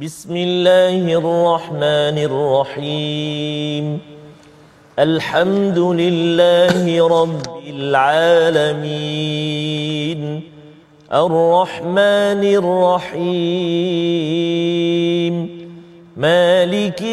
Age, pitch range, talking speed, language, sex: 40-59, 165-210 Hz, 40 wpm, Malayalam, male